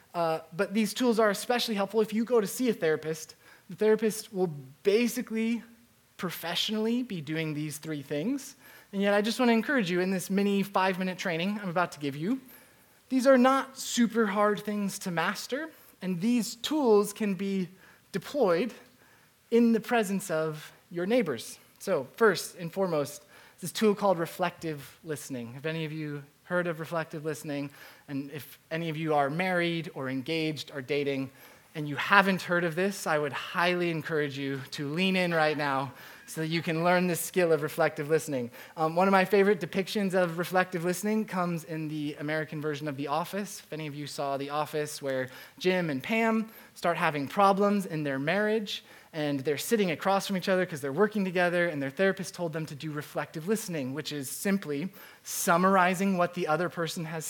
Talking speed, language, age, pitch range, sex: 185 wpm, English, 20-39, 155-200 Hz, male